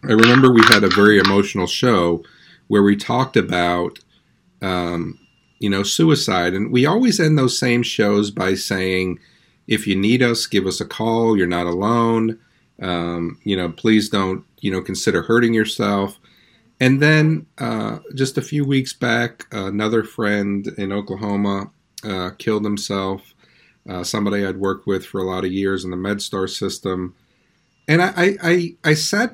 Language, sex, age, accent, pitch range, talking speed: English, male, 40-59, American, 95-130 Hz, 165 wpm